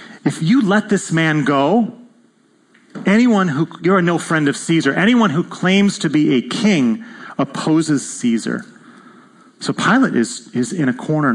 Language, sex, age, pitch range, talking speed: English, male, 30-49, 135-195 Hz, 155 wpm